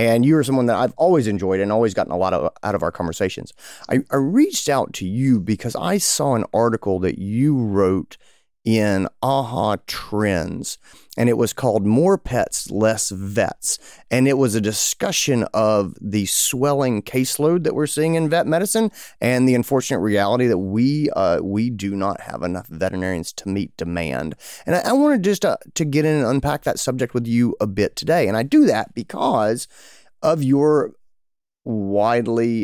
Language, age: English, 30-49